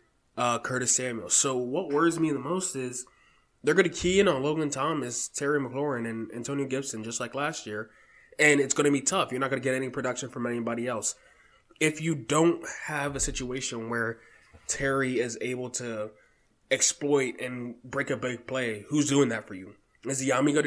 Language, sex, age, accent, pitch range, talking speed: English, male, 20-39, American, 120-145 Hz, 195 wpm